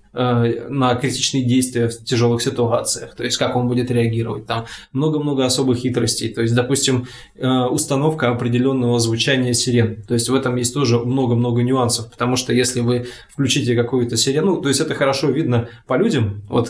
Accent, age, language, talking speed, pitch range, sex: native, 20-39, Russian, 165 wpm, 115-135 Hz, male